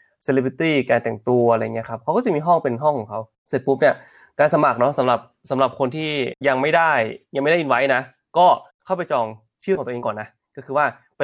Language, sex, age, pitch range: Thai, male, 20-39, 115-140 Hz